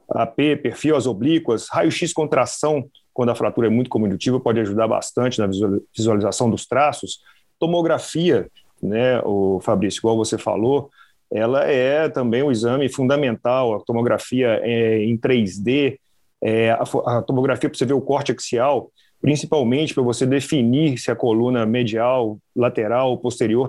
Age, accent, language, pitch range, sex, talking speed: 40-59, Brazilian, Portuguese, 115-150 Hz, male, 145 wpm